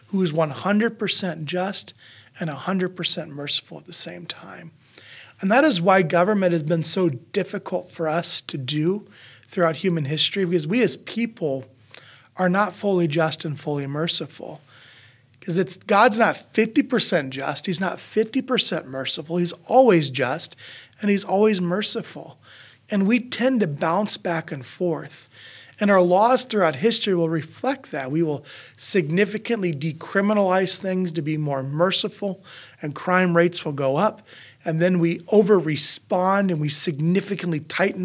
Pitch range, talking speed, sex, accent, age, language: 155-190 Hz, 150 wpm, male, American, 30-49, English